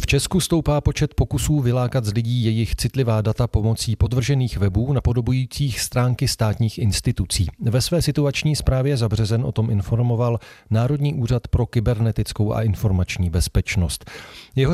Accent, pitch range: native, 105-130 Hz